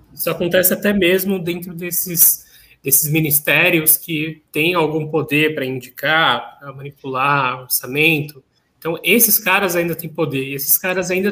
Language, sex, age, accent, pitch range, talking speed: Portuguese, male, 20-39, Brazilian, 135-170 Hz, 145 wpm